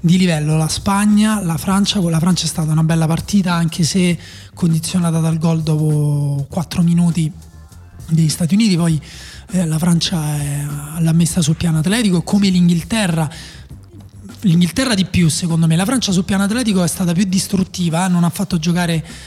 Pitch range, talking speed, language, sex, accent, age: 160-185 Hz, 170 wpm, Italian, male, native, 20-39